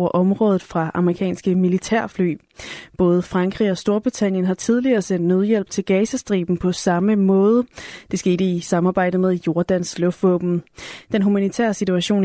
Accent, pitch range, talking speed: native, 180-205 Hz, 135 wpm